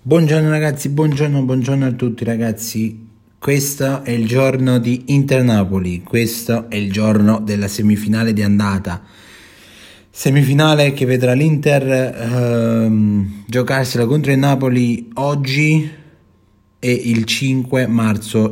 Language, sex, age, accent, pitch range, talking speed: Italian, male, 30-49, native, 110-130 Hz, 115 wpm